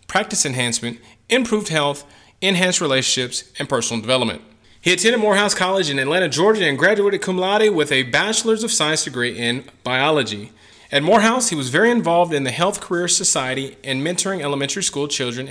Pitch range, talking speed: 135-190 Hz, 170 wpm